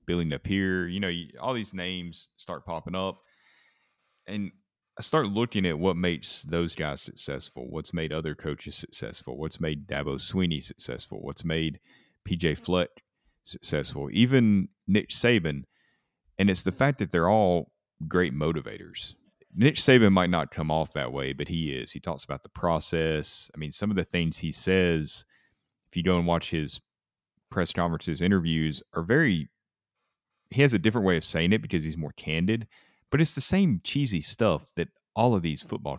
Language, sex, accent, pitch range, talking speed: English, male, American, 80-100 Hz, 175 wpm